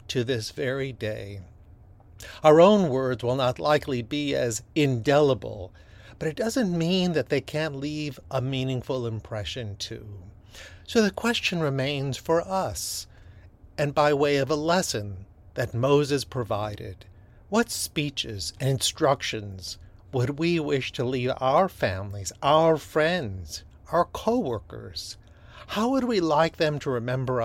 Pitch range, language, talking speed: 105-145 Hz, English, 135 wpm